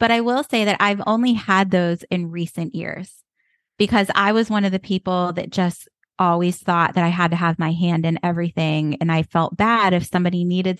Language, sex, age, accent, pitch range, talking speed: English, female, 20-39, American, 170-195 Hz, 215 wpm